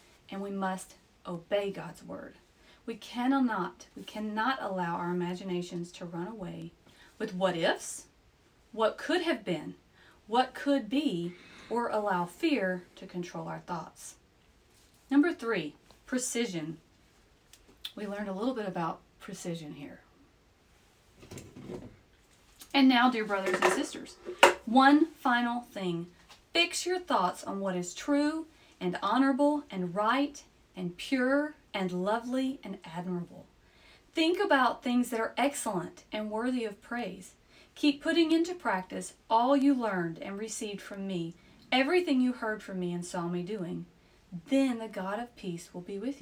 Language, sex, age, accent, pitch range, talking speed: English, female, 30-49, American, 180-260 Hz, 140 wpm